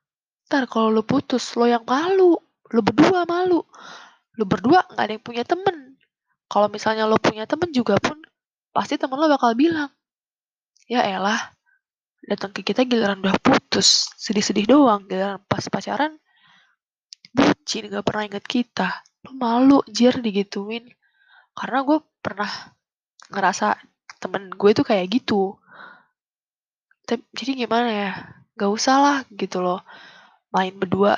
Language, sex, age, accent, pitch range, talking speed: Indonesian, female, 10-29, native, 200-270 Hz, 135 wpm